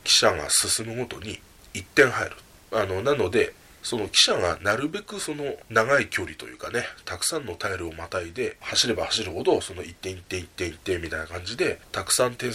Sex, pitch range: male, 90-125 Hz